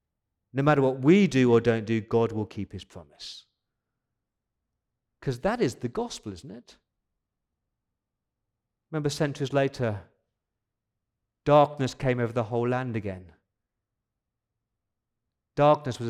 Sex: male